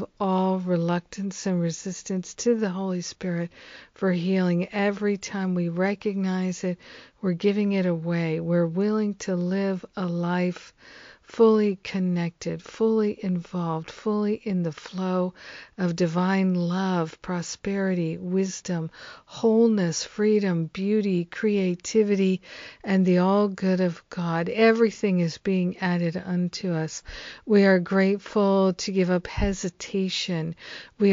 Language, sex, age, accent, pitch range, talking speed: English, female, 50-69, American, 175-205 Hz, 120 wpm